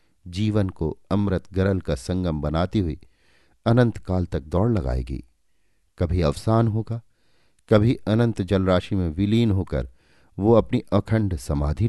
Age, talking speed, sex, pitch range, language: 50-69, 130 wpm, male, 85-110 Hz, Hindi